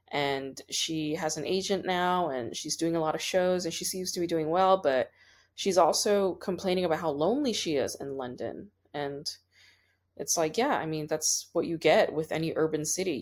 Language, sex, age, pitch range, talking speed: English, female, 20-39, 150-185 Hz, 205 wpm